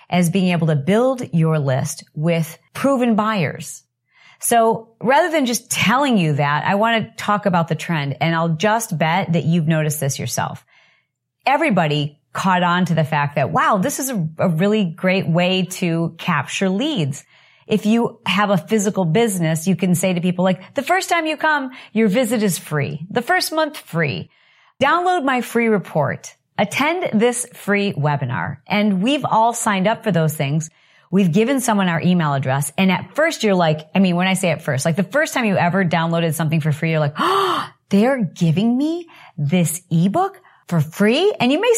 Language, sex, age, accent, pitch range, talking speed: English, female, 40-59, American, 160-220 Hz, 190 wpm